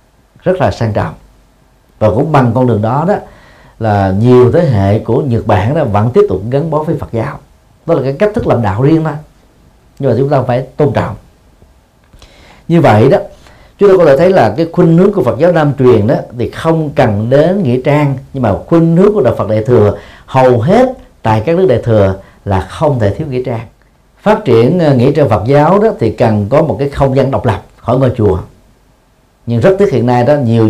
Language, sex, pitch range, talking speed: Vietnamese, male, 105-145 Hz, 225 wpm